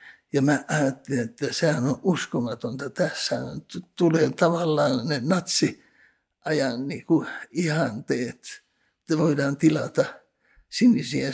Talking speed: 85 wpm